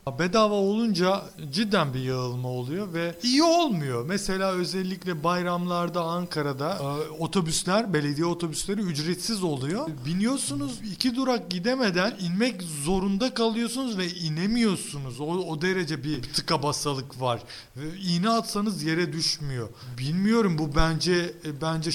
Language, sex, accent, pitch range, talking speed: Turkish, male, native, 150-200 Hz, 115 wpm